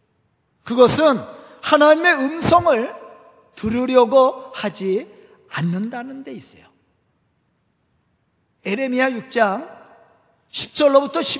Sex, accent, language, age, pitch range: male, native, Korean, 40-59, 240-295 Hz